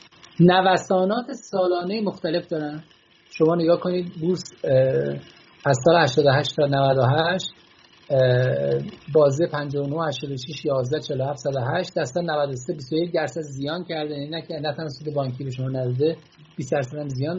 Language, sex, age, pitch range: Persian, male, 50-69, 140-175 Hz